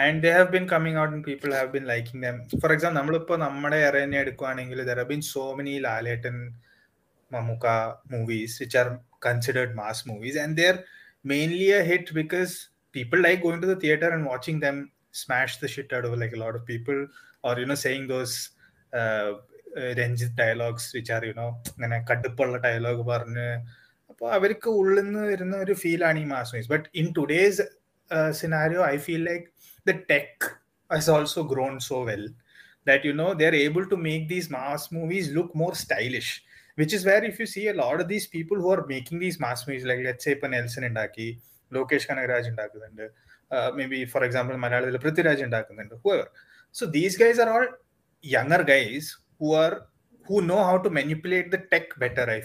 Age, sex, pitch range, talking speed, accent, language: 20-39, male, 125-170 Hz, 190 wpm, native, Malayalam